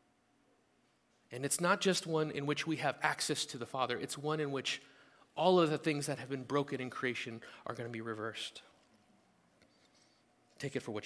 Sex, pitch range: male, 115-145 Hz